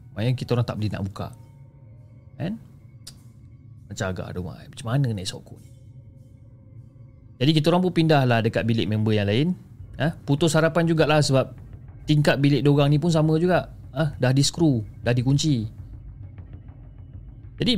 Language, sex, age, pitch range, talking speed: Malay, male, 30-49, 110-145 Hz, 160 wpm